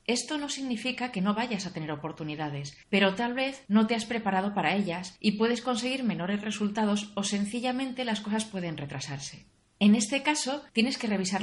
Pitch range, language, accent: 160-220 Hz, Spanish, Spanish